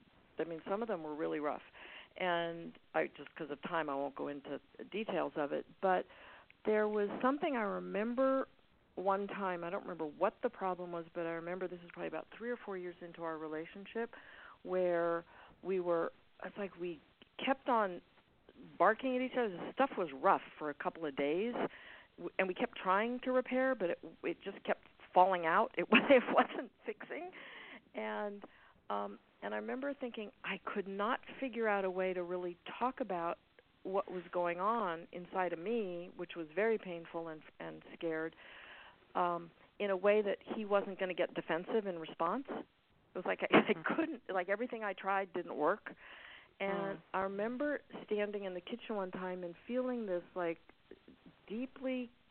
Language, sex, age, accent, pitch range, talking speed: English, female, 50-69, American, 170-225 Hz, 180 wpm